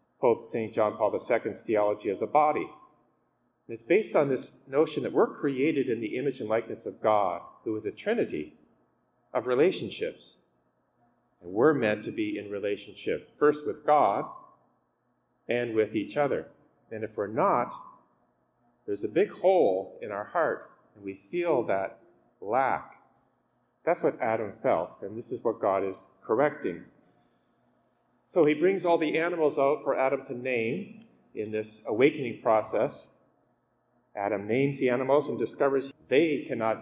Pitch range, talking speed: 110-160 Hz, 155 wpm